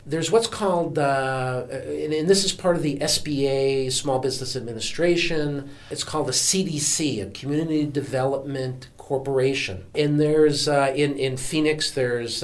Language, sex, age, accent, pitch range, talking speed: English, male, 50-69, American, 125-155 Hz, 145 wpm